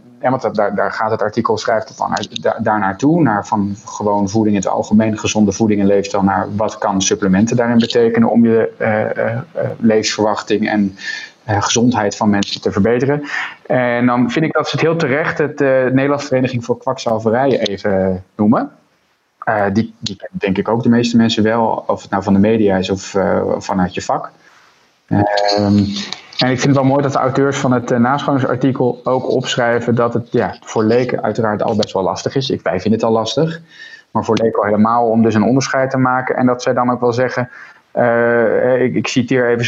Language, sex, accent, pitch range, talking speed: Dutch, male, Dutch, 110-130 Hz, 205 wpm